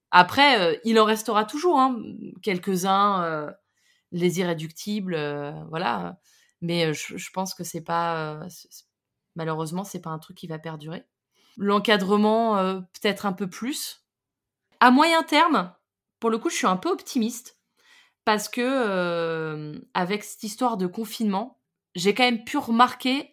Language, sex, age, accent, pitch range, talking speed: French, female, 20-39, French, 180-230 Hz, 160 wpm